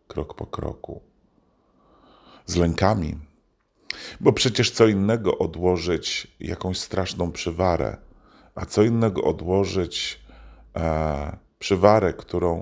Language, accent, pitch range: Polish, native, 80-100 Hz